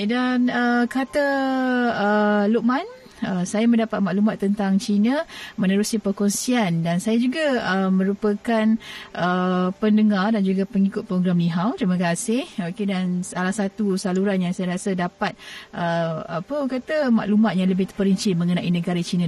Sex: female